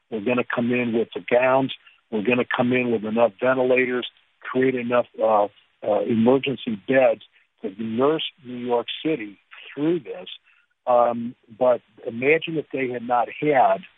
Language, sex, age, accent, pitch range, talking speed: English, male, 50-69, American, 115-135 Hz, 150 wpm